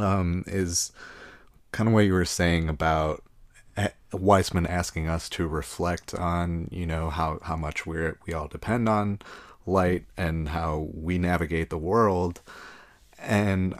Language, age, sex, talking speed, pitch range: English, 30-49, male, 140 wpm, 85-95 Hz